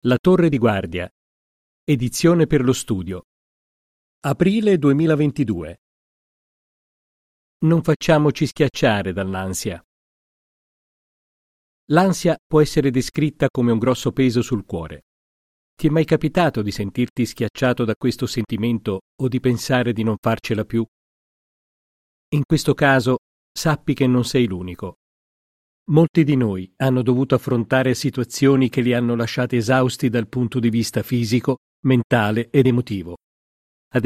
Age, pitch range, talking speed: 40-59, 110-140 Hz, 125 wpm